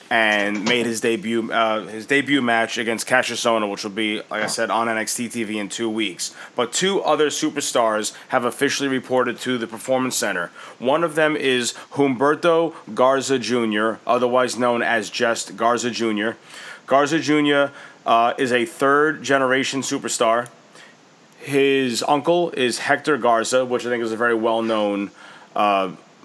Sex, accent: male, American